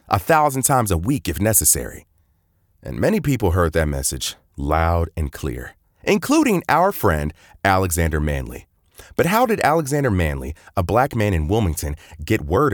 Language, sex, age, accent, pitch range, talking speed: English, male, 30-49, American, 85-120 Hz, 155 wpm